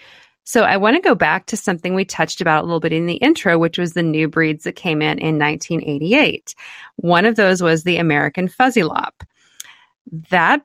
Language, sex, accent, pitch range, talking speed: English, female, American, 160-205 Hz, 205 wpm